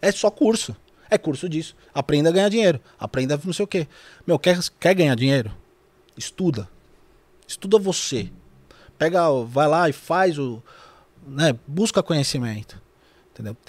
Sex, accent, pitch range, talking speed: male, Brazilian, 135-180 Hz, 145 wpm